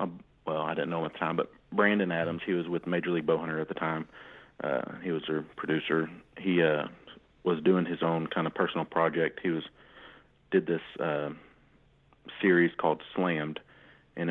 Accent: American